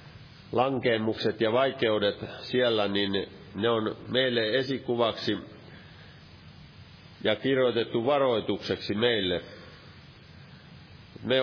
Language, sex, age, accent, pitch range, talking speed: Finnish, male, 50-69, native, 100-120 Hz, 75 wpm